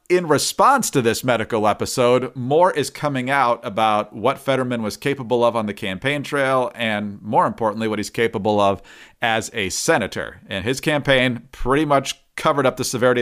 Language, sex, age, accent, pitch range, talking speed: English, male, 40-59, American, 115-145 Hz, 175 wpm